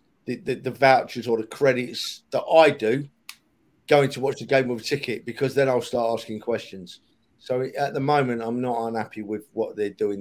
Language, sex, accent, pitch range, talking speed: English, male, British, 115-140 Hz, 205 wpm